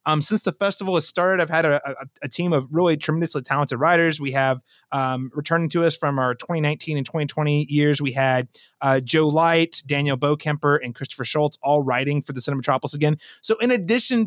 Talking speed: 200 wpm